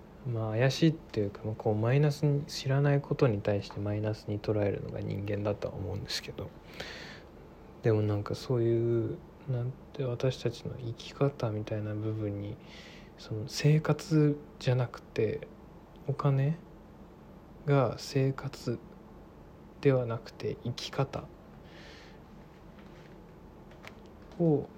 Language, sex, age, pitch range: Japanese, male, 20-39, 110-145 Hz